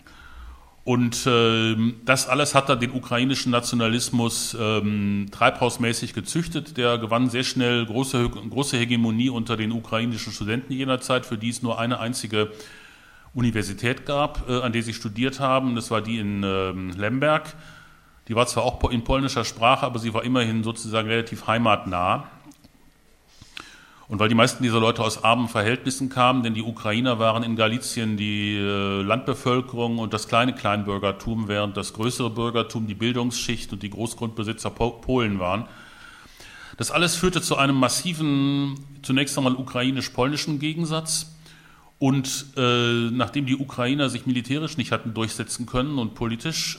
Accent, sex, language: German, male, German